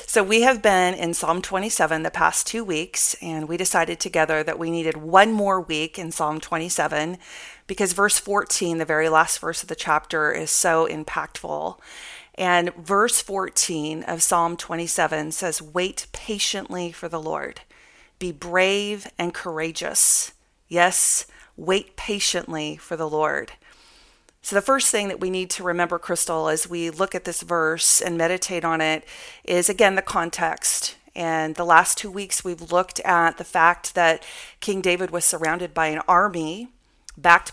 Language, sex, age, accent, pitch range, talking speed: English, female, 30-49, American, 165-190 Hz, 165 wpm